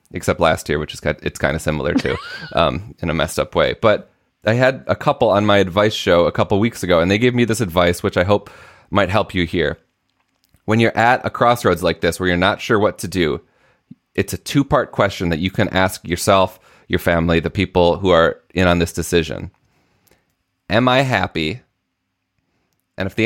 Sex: male